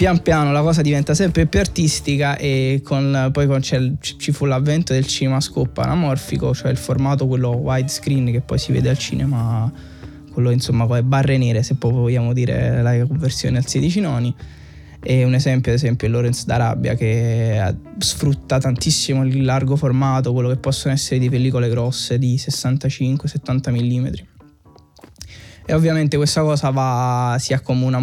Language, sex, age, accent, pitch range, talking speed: Italian, male, 20-39, native, 125-140 Hz, 160 wpm